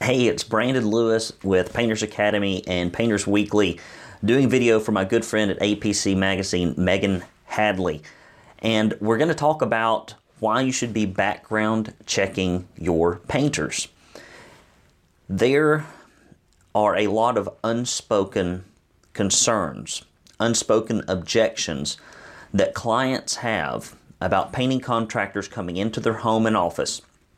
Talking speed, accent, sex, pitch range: 120 wpm, American, male, 95-115 Hz